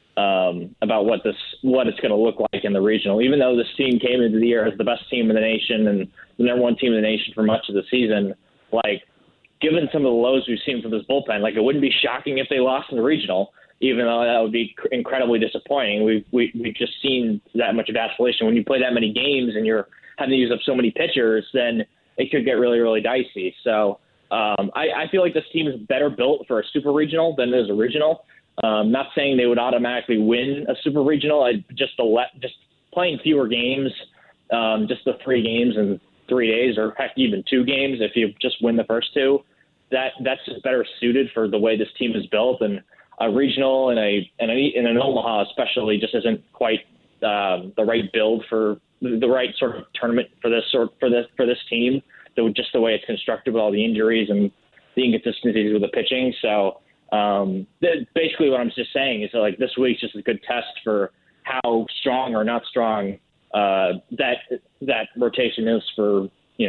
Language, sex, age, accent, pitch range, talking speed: English, male, 20-39, American, 110-130 Hz, 225 wpm